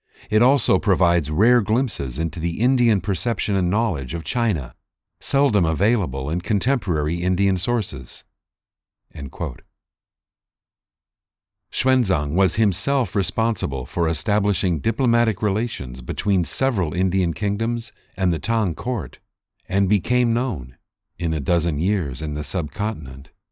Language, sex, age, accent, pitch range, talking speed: English, male, 50-69, American, 85-110 Hz, 120 wpm